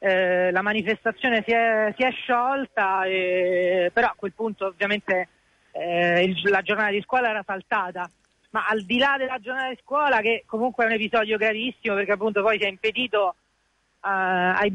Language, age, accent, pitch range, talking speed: Italian, 40-59, native, 205-250 Hz, 180 wpm